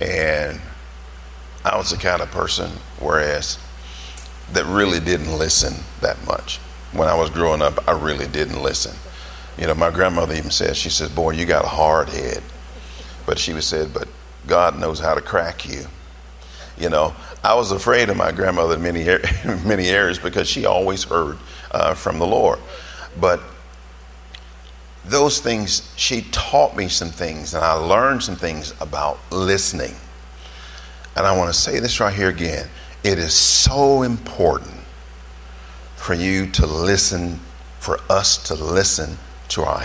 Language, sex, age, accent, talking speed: English, male, 50-69, American, 155 wpm